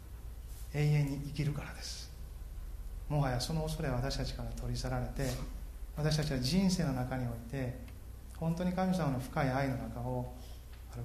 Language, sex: Japanese, male